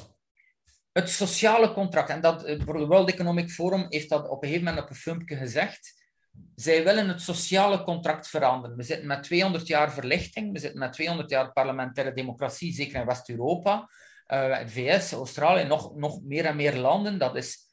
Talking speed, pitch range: 175 wpm, 140-180 Hz